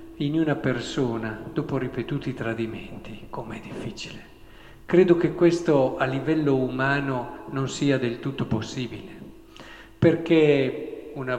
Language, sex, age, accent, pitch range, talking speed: Italian, male, 50-69, native, 120-170 Hz, 110 wpm